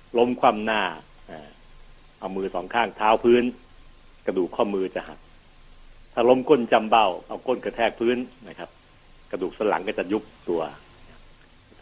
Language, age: Thai, 60-79